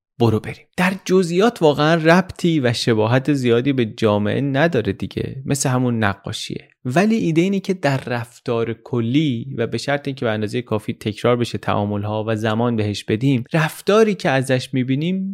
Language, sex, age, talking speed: Persian, male, 30-49, 165 wpm